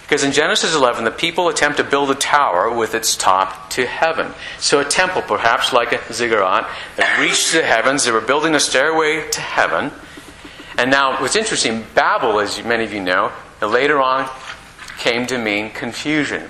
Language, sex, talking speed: English, male, 180 wpm